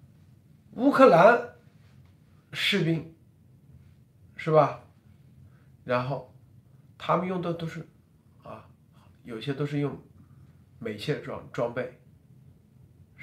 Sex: male